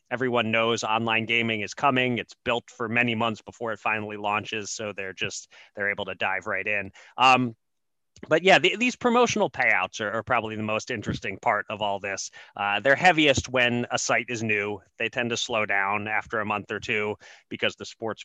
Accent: American